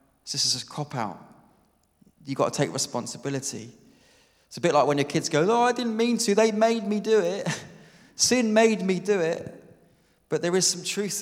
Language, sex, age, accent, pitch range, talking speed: English, male, 30-49, British, 125-170 Hz, 200 wpm